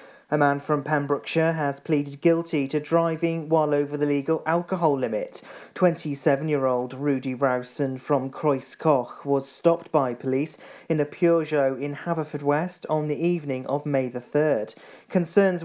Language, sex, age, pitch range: English, male, 40-59, 135-165 Hz